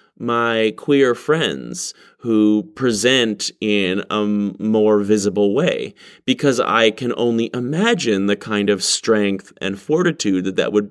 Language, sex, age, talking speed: English, male, 30-49, 130 wpm